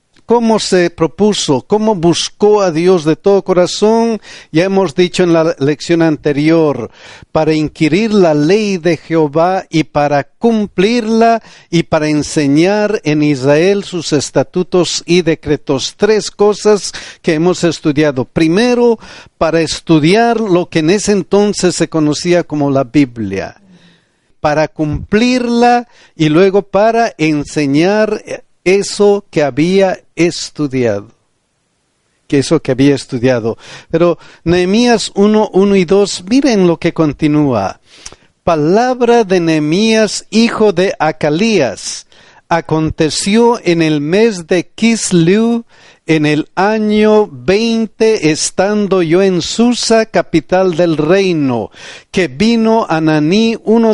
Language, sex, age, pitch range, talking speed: Spanish, male, 50-69, 155-210 Hz, 115 wpm